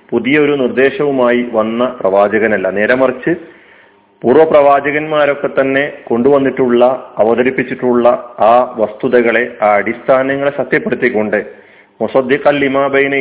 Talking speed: 80 wpm